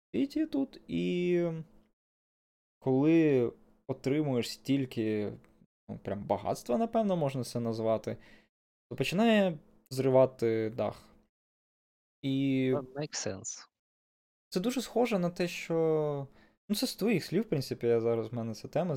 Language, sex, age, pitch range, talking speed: Ukrainian, male, 20-39, 115-160 Hz, 115 wpm